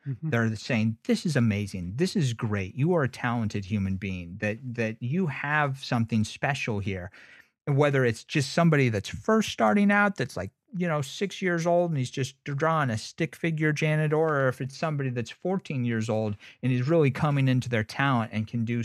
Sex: male